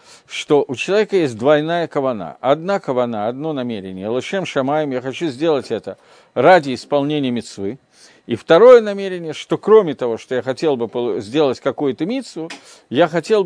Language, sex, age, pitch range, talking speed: Russian, male, 50-69, 135-190 Hz, 150 wpm